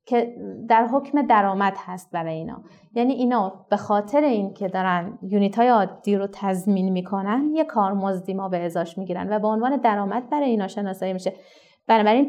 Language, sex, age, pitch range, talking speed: Persian, female, 30-49, 190-240 Hz, 170 wpm